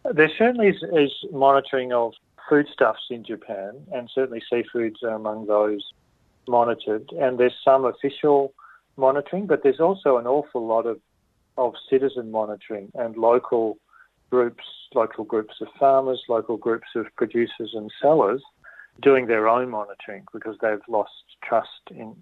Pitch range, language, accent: 110-130 Hz, English, Australian